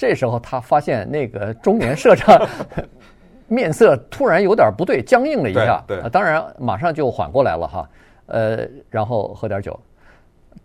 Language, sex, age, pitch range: Chinese, male, 50-69, 110-140 Hz